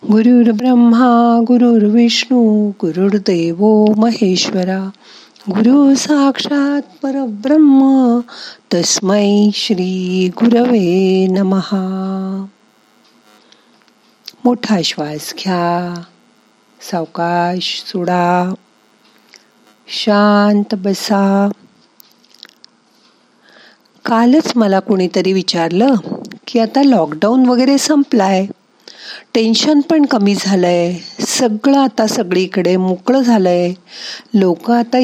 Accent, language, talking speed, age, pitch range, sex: native, Marathi, 70 wpm, 50-69, 185-245 Hz, female